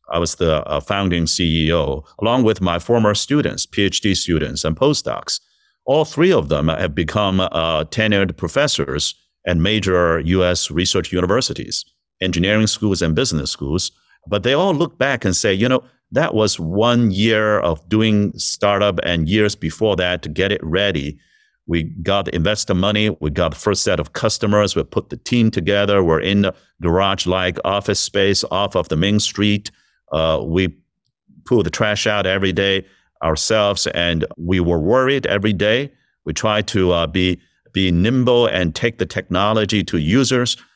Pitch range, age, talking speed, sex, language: 85-110 Hz, 50-69, 165 wpm, male, English